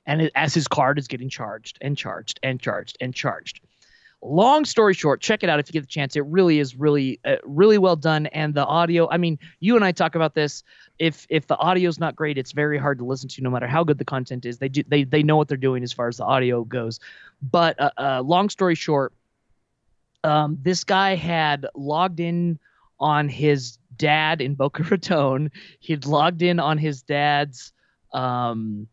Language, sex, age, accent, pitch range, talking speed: English, male, 30-49, American, 130-165 Hz, 215 wpm